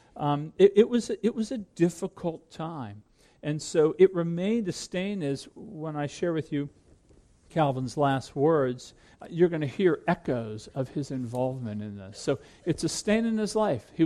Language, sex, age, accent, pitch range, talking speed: English, male, 50-69, American, 135-175 Hz, 175 wpm